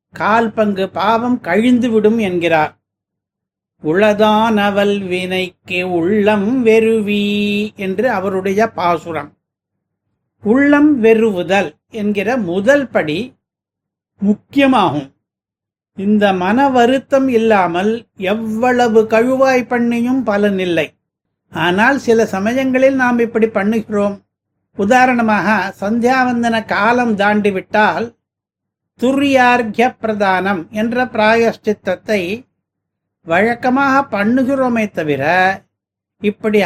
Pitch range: 190-240 Hz